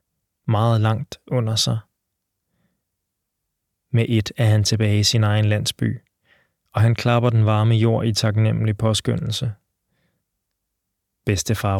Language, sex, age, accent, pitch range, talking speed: Danish, male, 20-39, native, 110-125 Hz, 115 wpm